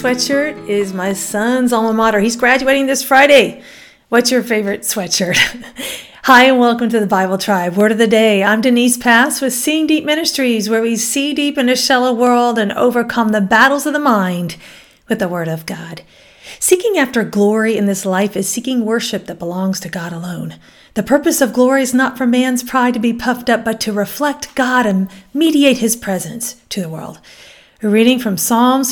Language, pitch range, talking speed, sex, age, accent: English, 205-265 Hz, 195 wpm, female, 40-59, American